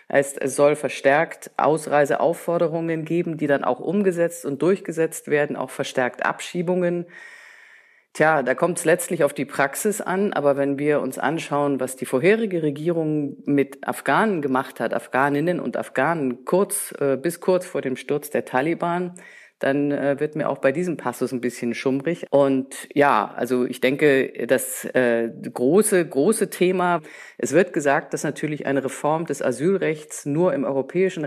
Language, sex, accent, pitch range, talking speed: German, female, German, 135-170 Hz, 155 wpm